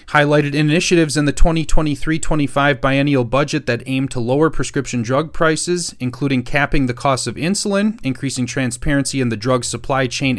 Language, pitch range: English, 115-145 Hz